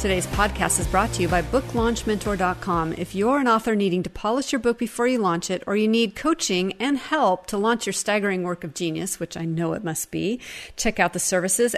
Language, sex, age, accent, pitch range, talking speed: English, female, 40-59, American, 180-210 Hz, 225 wpm